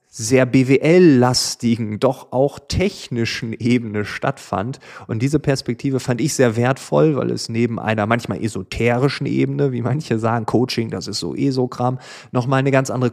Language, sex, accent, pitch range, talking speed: German, male, German, 110-135 Hz, 160 wpm